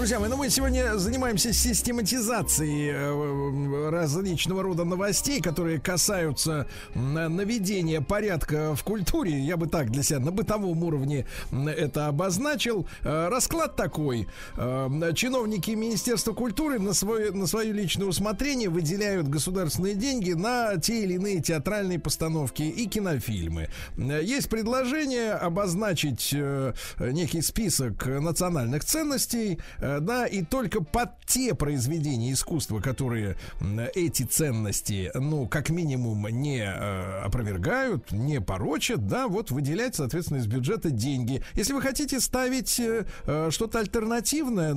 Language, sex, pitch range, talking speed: Russian, male, 140-210 Hz, 115 wpm